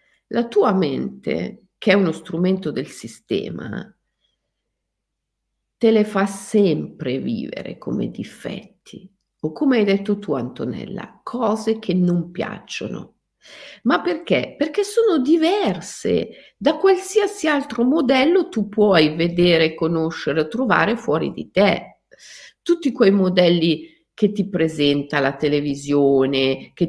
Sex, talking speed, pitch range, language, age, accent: female, 115 wpm, 145-220 Hz, Italian, 50-69, native